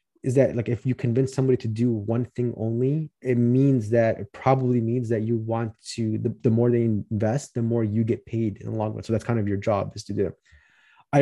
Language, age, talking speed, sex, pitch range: English, 30-49, 245 wpm, male, 115-130 Hz